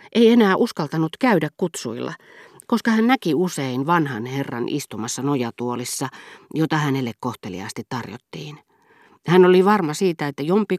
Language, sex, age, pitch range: Finnish, female, 40-59, 135-185 Hz